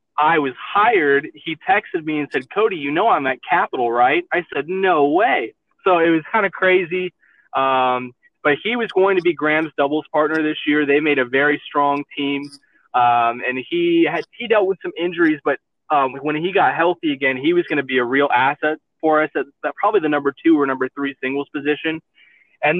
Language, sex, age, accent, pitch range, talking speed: English, male, 20-39, American, 140-180 Hz, 210 wpm